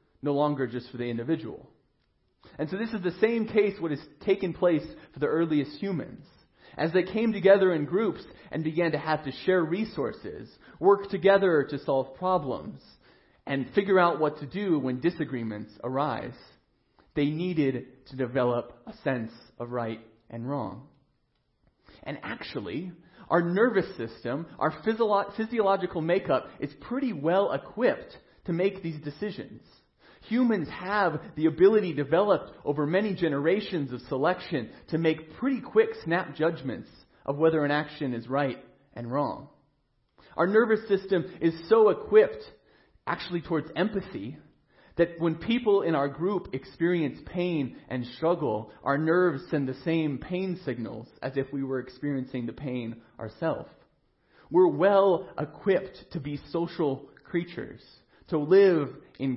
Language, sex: English, male